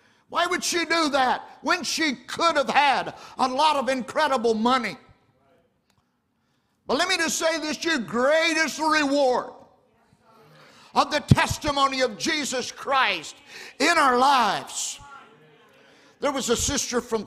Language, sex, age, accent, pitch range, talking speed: English, male, 50-69, American, 240-305 Hz, 130 wpm